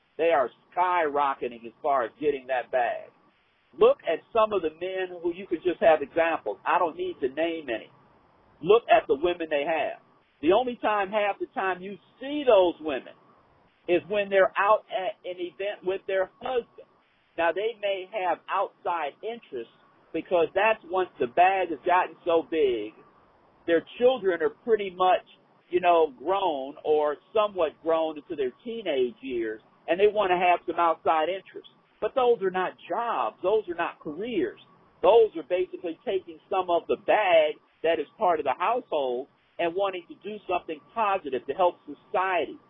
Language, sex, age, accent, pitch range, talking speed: English, male, 50-69, American, 170-250 Hz, 175 wpm